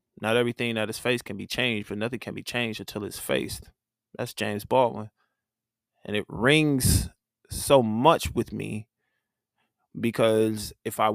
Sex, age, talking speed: male, 20-39, 155 wpm